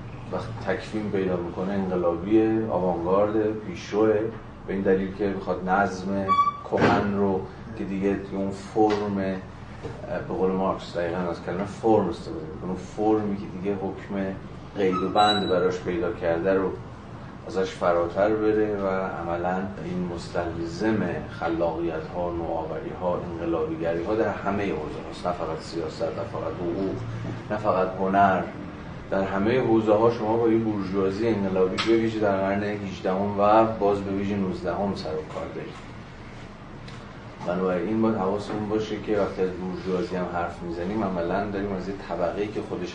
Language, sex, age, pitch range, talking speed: Persian, male, 30-49, 90-105 Hz, 145 wpm